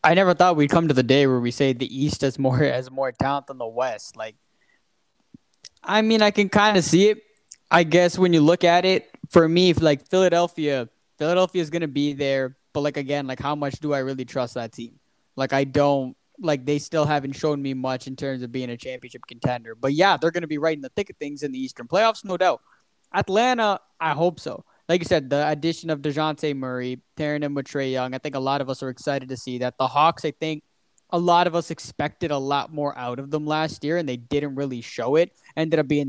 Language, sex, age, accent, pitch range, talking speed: English, male, 10-29, American, 135-170 Hz, 250 wpm